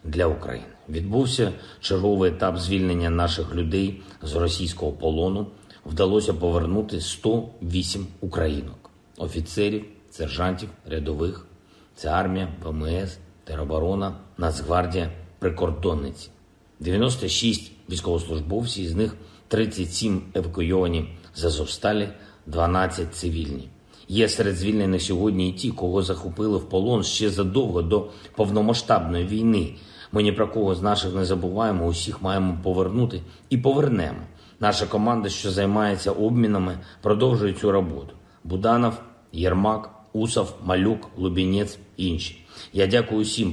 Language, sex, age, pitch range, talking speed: Ukrainian, male, 50-69, 90-105 Hz, 110 wpm